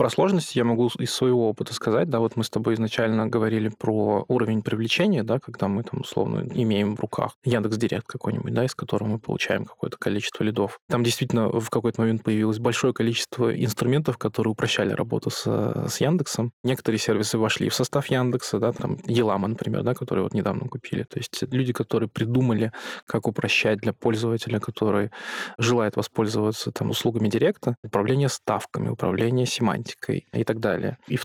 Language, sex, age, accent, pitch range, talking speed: Russian, male, 20-39, native, 110-125 Hz, 175 wpm